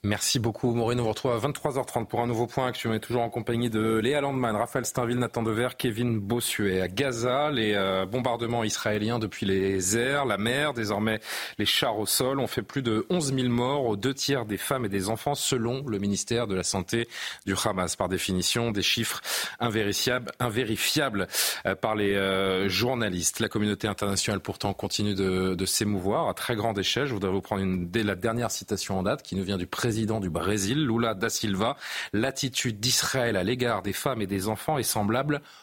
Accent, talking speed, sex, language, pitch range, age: French, 205 wpm, male, French, 100-125 Hz, 30-49